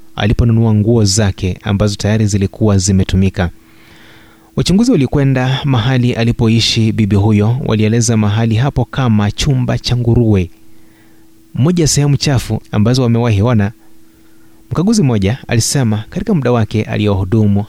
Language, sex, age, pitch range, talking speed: Swahili, male, 30-49, 105-120 Hz, 110 wpm